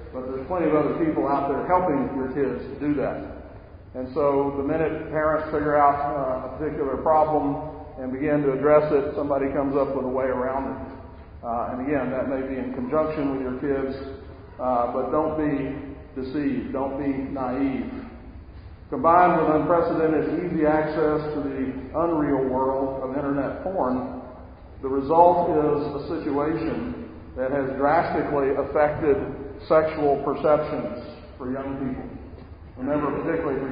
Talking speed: 150 wpm